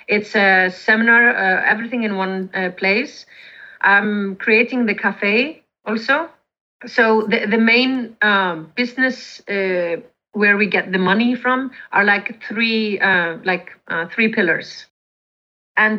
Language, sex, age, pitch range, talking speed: English, female, 30-49, 195-235 Hz, 135 wpm